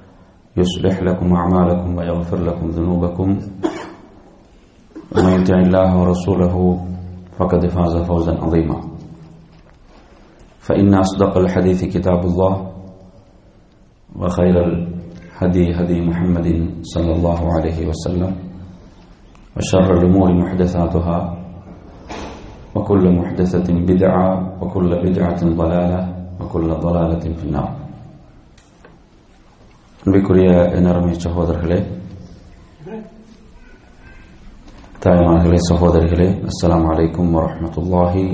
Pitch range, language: 85-95 Hz, English